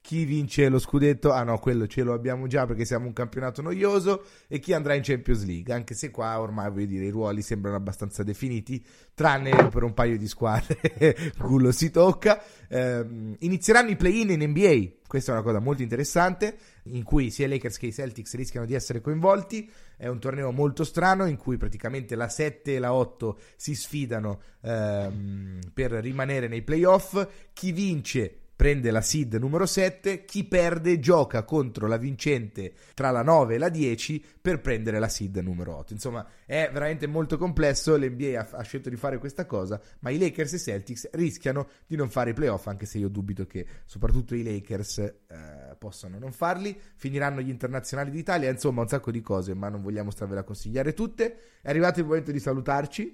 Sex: male